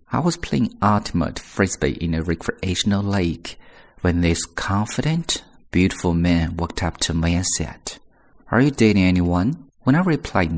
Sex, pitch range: male, 85-105 Hz